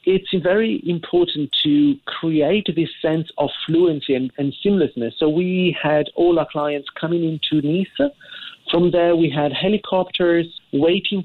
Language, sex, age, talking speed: English, male, 40-59, 145 wpm